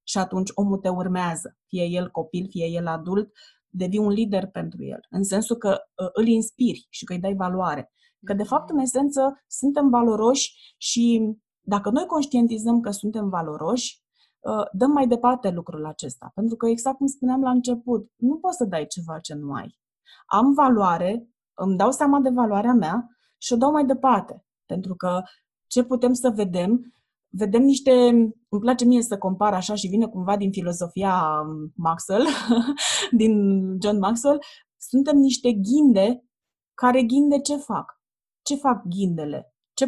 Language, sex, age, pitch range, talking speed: Romanian, female, 20-39, 195-260 Hz, 160 wpm